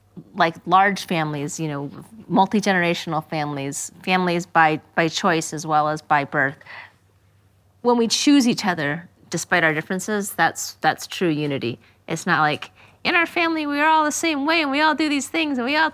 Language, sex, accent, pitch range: English, female, American, 150-195 Hz